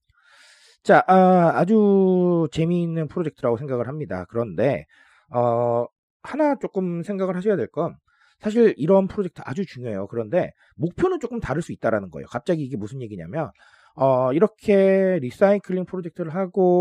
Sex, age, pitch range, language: male, 40-59, 130-200 Hz, Korean